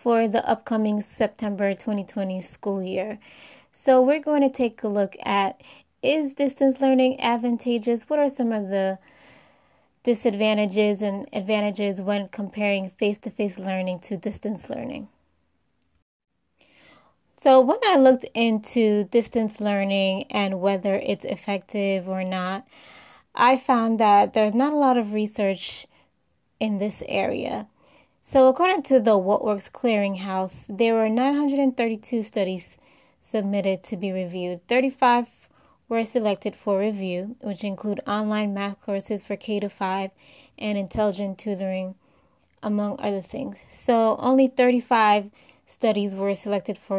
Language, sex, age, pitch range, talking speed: English, female, 20-39, 200-240 Hz, 130 wpm